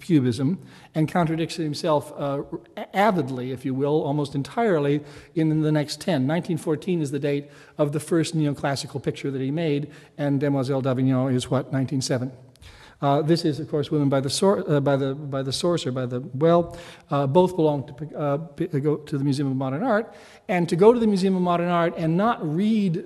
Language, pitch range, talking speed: English, 145-180 Hz, 180 wpm